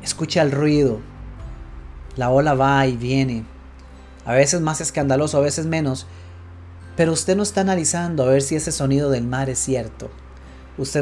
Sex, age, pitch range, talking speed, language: male, 30-49, 110-145 Hz, 165 wpm, Spanish